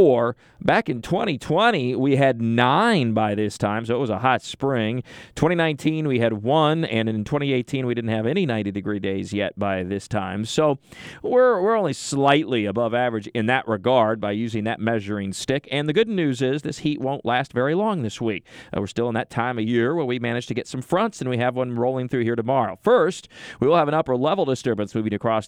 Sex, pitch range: male, 110-135 Hz